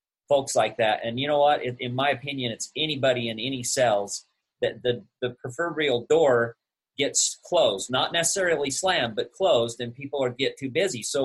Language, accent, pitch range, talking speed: English, American, 115-140 Hz, 185 wpm